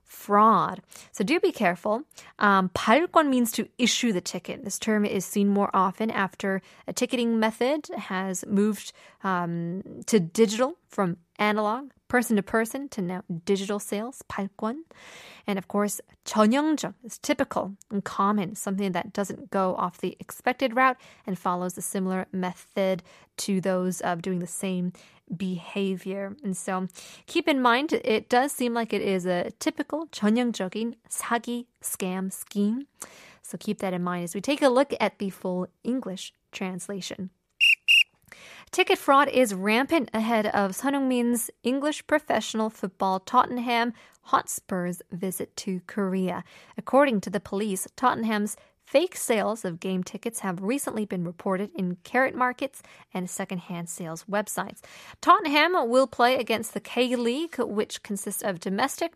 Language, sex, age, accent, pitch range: Korean, female, 20-39, American, 190-245 Hz